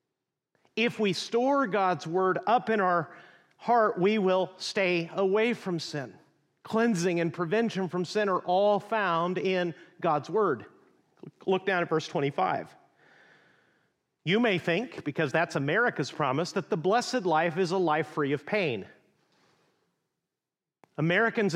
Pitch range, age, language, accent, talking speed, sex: 170-210 Hz, 40-59, English, American, 135 wpm, male